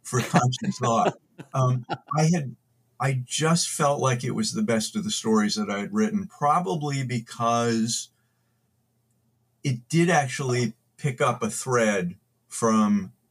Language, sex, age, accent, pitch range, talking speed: English, male, 50-69, American, 110-150 Hz, 135 wpm